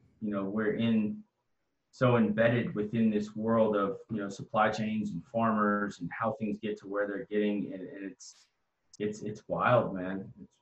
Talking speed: 180 wpm